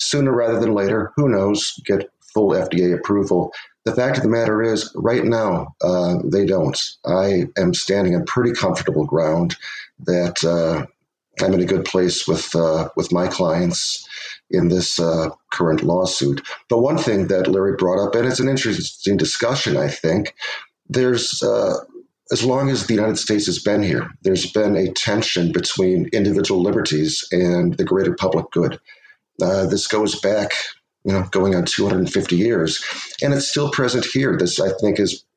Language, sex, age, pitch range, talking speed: English, male, 50-69, 90-125 Hz, 170 wpm